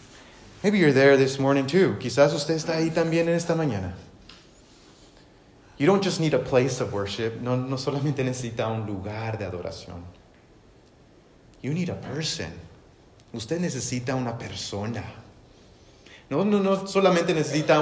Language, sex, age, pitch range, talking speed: English, male, 30-49, 125-190 Hz, 145 wpm